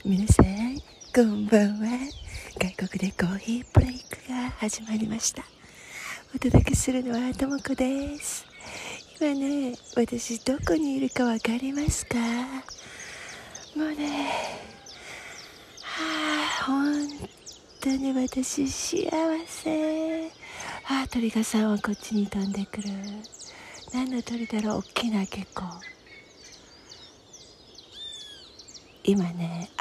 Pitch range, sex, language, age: 200-270 Hz, female, Japanese, 40-59